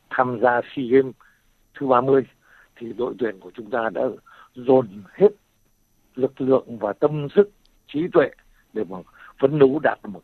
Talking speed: 170 wpm